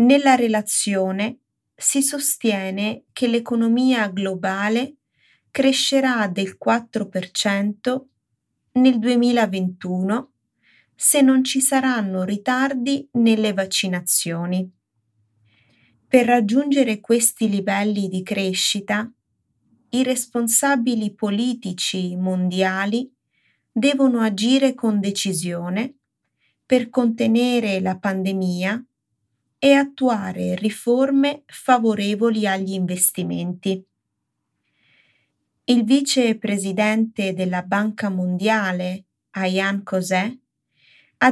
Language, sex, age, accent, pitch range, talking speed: Italian, female, 30-49, native, 190-250 Hz, 75 wpm